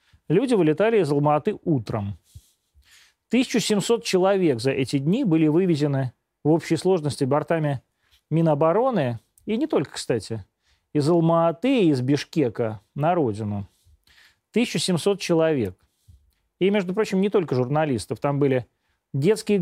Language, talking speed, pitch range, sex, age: Russian, 115 wpm, 125-185 Hz, male, 30-49